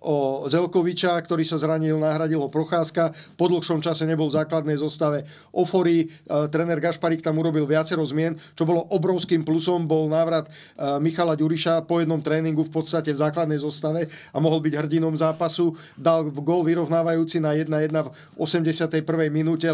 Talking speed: 150 wpm